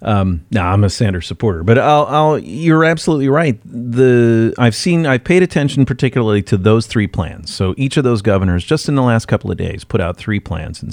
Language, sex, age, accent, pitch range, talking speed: English, male, 40-59, American, 95-125 Hz, 225 wpm